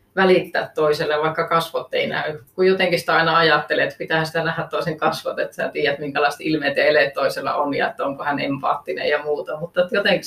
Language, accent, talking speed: Finnish, native, 200 wpm